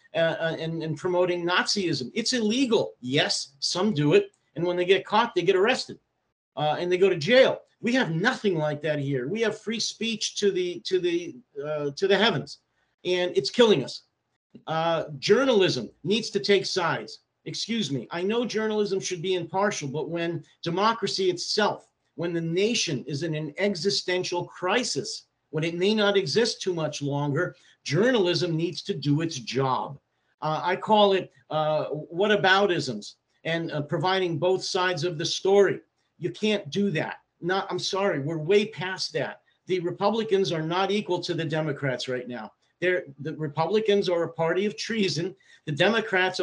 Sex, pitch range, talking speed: male, 155-200 Hz, 170 wpm